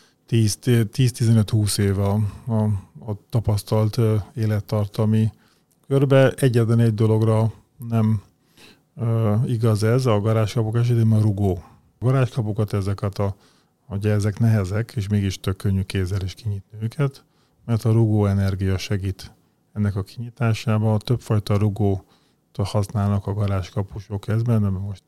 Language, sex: Hungarian, male